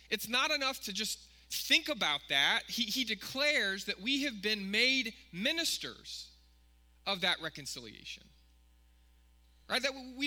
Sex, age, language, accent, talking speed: male, 20-39, English, American, 135 wpm